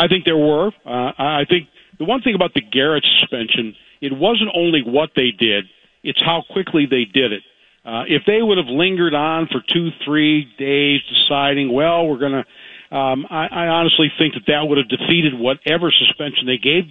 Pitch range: 135-170 Hz